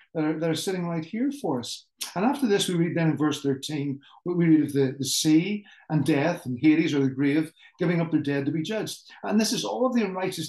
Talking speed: 255 wpm